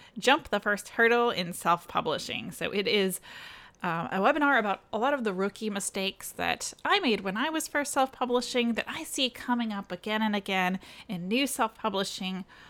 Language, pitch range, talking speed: English, 195-265 Hz, 180 wpm